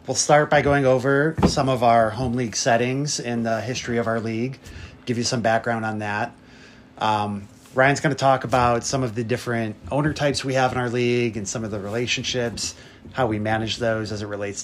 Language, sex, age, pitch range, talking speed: English, male, 30-49, 105-125 Hz, 215 wpm